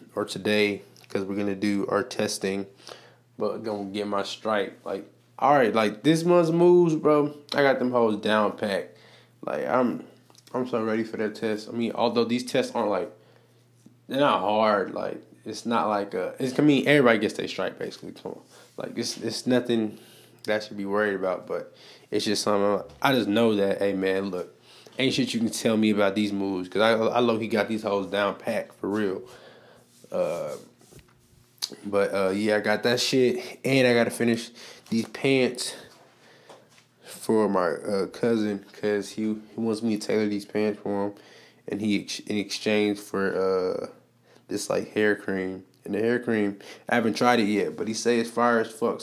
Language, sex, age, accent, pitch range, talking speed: English, male, 20-39, American, 105-125 Hz, 190 wpm